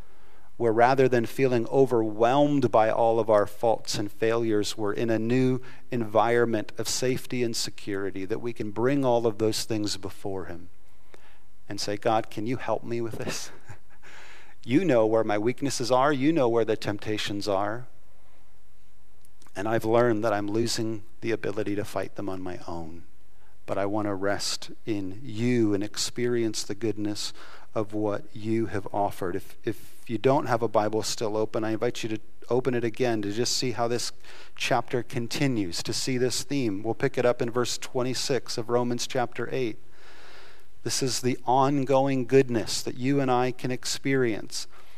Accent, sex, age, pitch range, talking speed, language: American, male, 40-59, 105-125 Hz, 175 wpm, English